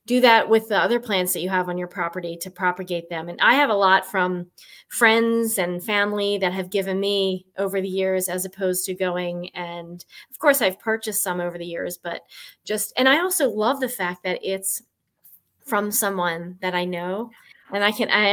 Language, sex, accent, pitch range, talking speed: English, female, American, 185-230 Hz, 205 wpm